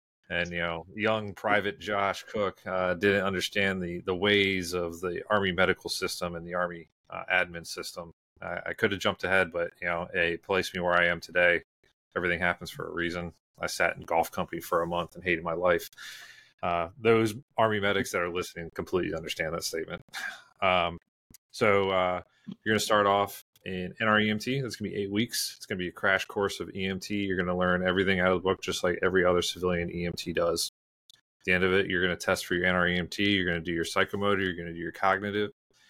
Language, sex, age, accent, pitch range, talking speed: English, male, 30-49, American, 85-100 Hz, 220 wpm